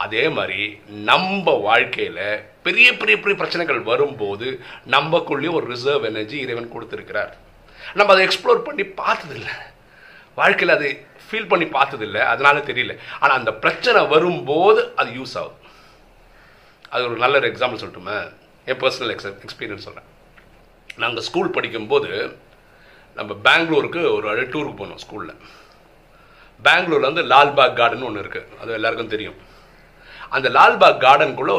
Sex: male